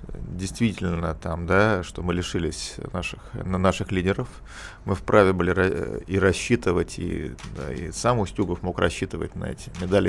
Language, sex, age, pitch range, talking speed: Russian, male, 40-59, 90-105 Hz, 145 wpm